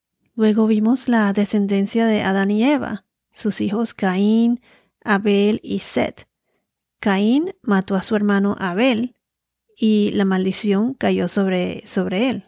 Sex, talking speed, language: female, 130 wpm, Spanish